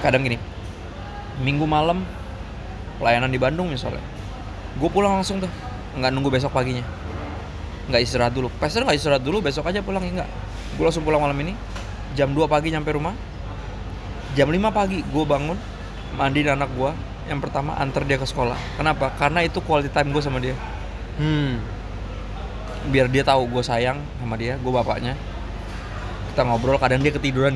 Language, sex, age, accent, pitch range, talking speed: Indonesian, male, 20-39, native, 100-135 Hz, 165 wpm